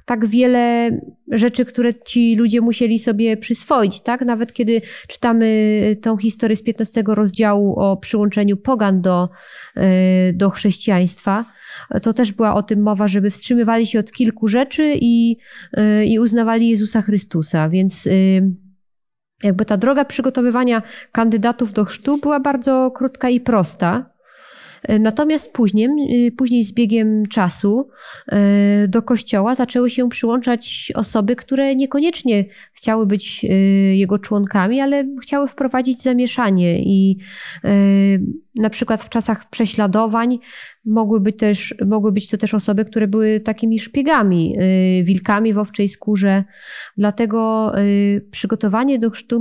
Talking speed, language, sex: 125 wpm, Polish, female